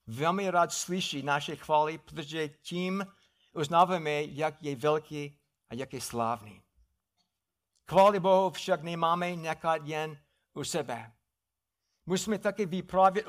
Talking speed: 115 wpm